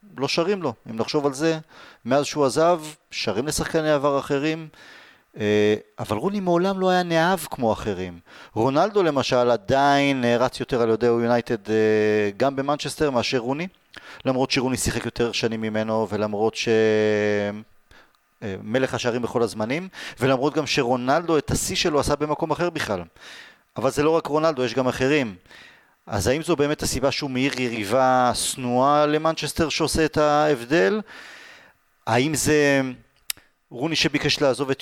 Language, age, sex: Hebrew, 30-49, male